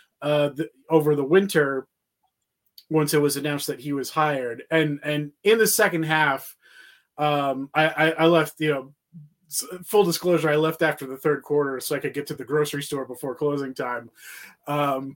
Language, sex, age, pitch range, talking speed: English, male, 20-39, 135-165 Hz, 185 wpm